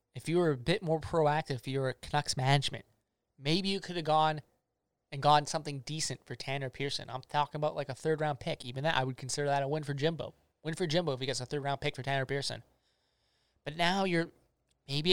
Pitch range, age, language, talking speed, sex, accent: 130-155 Hz, 20-39, English, 230 wpm, male, American